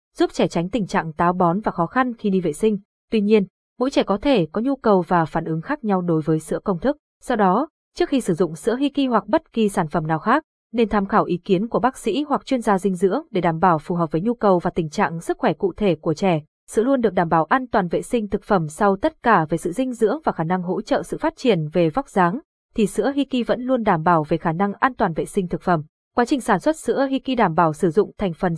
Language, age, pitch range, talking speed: Vietnamese, 20-39, 180-240 Hz, 285 wpm